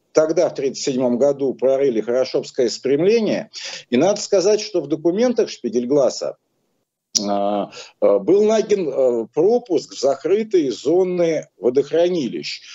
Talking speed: 100 wpm